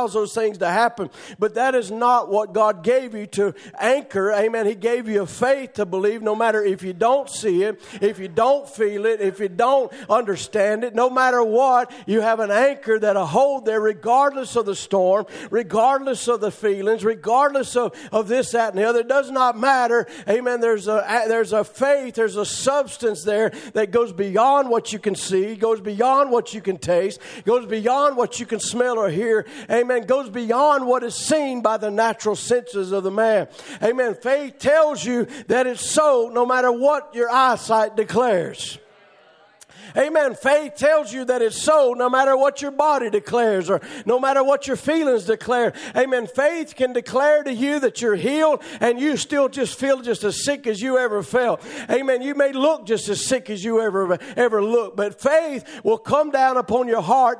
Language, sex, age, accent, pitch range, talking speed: English, male, 50-69, American, 215-265 Hz, 195 wpm